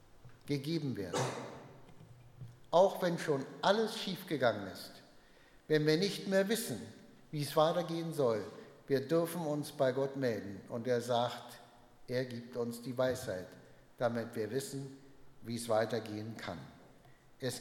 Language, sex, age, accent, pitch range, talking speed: German, male, 60-79, German, 125-165 Hz, 135 wpm